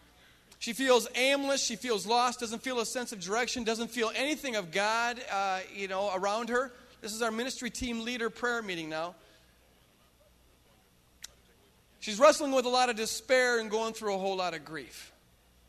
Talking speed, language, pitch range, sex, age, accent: 175 wpm, English, 165-235 Hz, male, 40-59, American